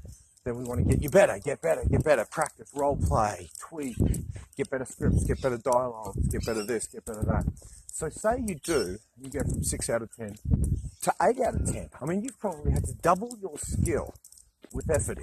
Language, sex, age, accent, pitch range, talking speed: English, male, 40-59, Australian, 105-160 Hz, 215 wpm